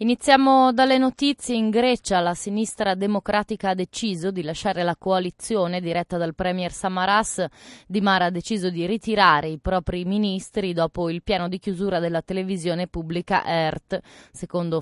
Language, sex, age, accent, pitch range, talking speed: Italian, female, 20-39, native, 165-200 Hz, 150 wpm